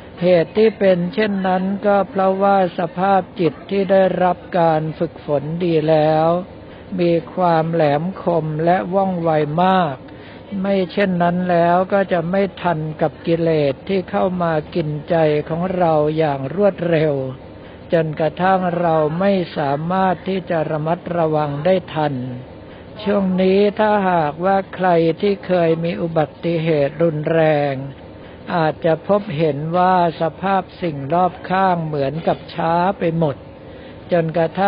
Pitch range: 155-185 Hz